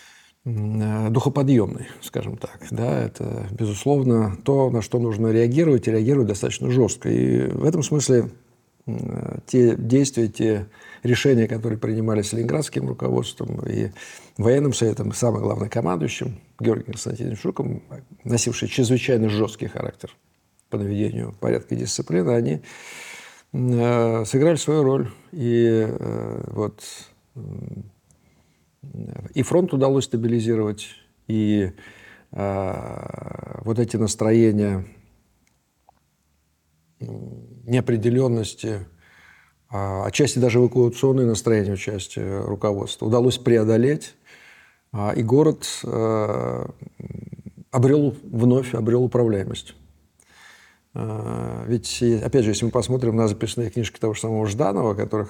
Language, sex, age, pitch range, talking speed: Russian, male, 50-69, 105-125 Hz, 100 wpm